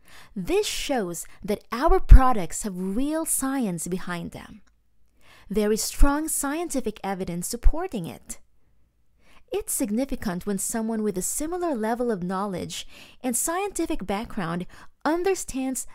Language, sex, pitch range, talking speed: English, female, 195-270 Hz, 115 wpm